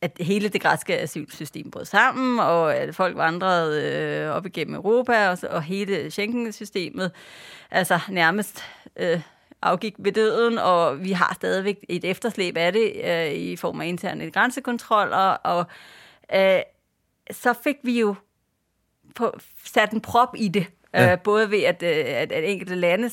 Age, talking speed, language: 30-49, 155 wpm, English